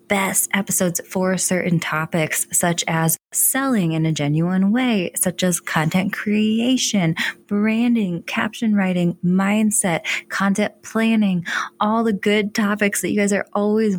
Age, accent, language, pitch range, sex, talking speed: 20-39, American, English, 175-225 Hz, female, 135 wpm